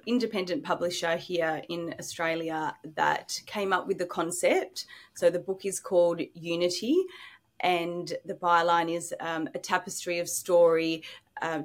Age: 30-49